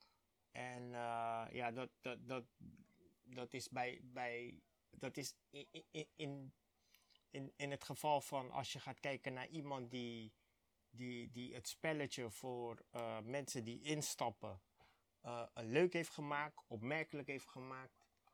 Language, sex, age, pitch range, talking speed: Dutch, male, 30-49, 120-140 Hz, 105 wpm